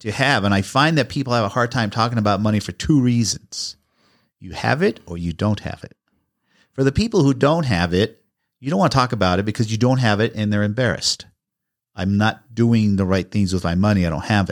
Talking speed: 245 wpm